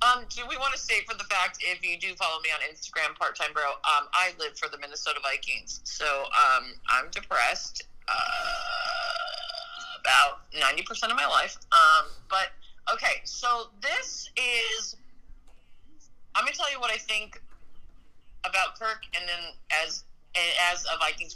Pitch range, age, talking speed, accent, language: 175-285 Hz, 30-49, 155 wpm, American, English